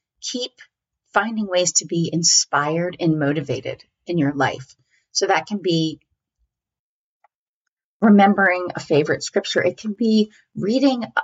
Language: English